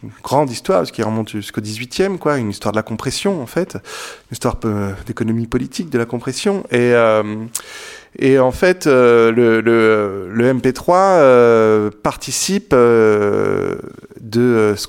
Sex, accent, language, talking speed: male, French, French, 155 wpm